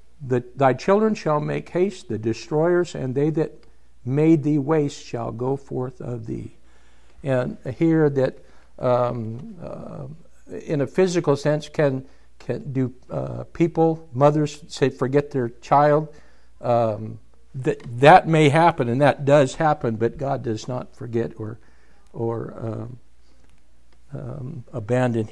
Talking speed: 135 wpm